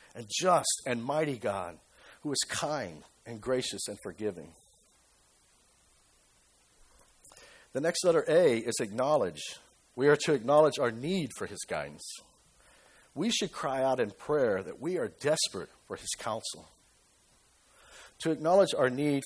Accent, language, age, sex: American, English, 50-69, male